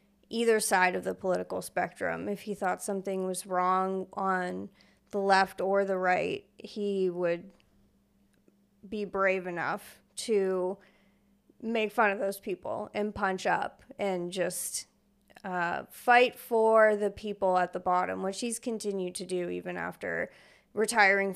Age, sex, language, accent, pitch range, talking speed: 30-49, female, English, American, 185-210 Hz, 140 wpm